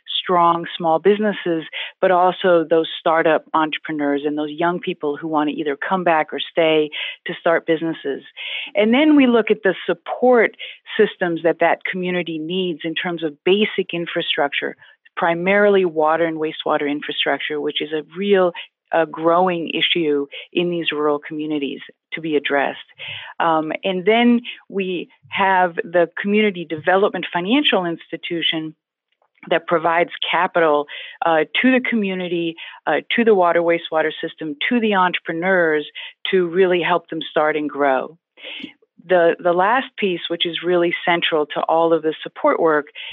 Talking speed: 145 wpm